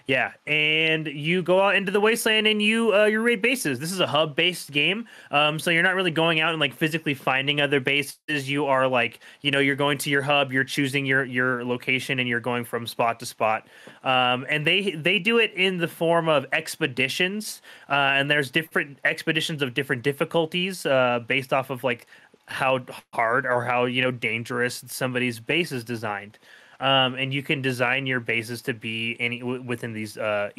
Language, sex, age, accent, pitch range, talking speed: English, male, 20-39, American, 125-165 Hz, 205 wpm